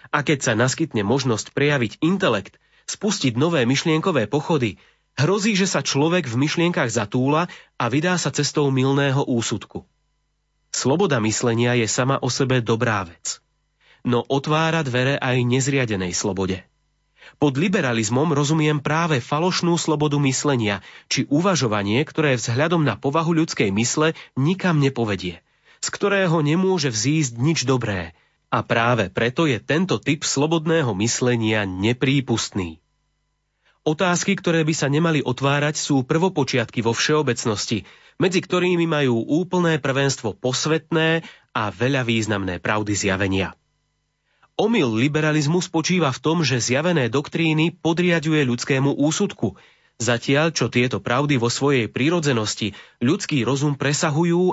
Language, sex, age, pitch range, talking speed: Slovak, male, 30-49, 120-160 Hz, 125 wpm